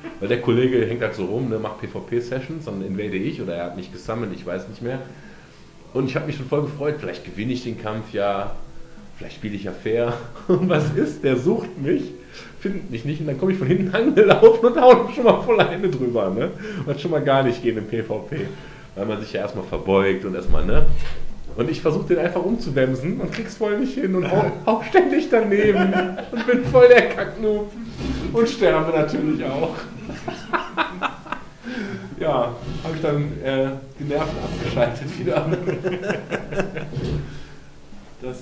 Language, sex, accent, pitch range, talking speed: German, male, German, 115-185 Hz, 180 wpm